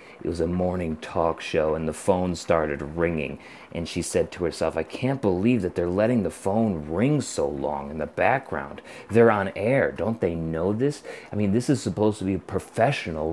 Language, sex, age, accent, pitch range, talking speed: English, male, 30-49, American, 90-120 Hz, 205 wpm